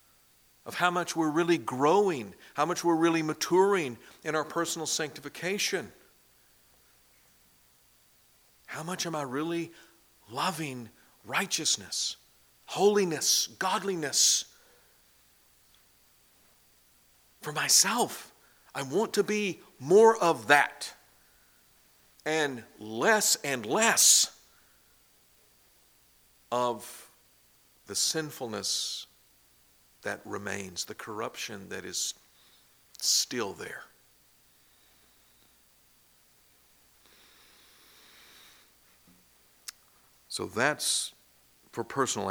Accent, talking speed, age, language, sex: American, 75 wpm, 50-69, English, male